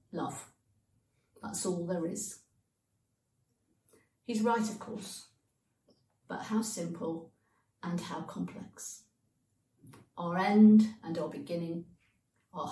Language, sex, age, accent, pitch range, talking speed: English, female, 40-59, British, 120-190 Hz, 100 wpm